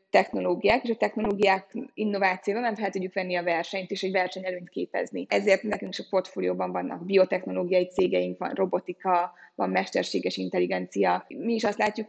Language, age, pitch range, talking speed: Hungarian, 20-39, 185-210 Hz, 160 wpm